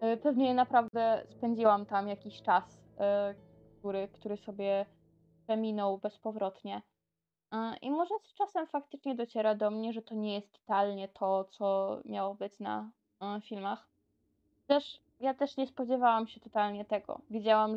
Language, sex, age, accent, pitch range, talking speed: Polish, female, 20-39, native, 200-235 Hz, 140 wpm